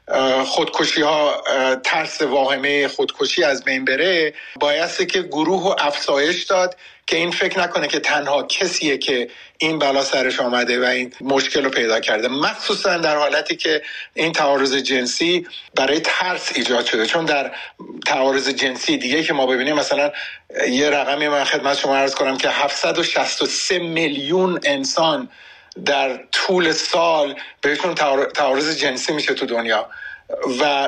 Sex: male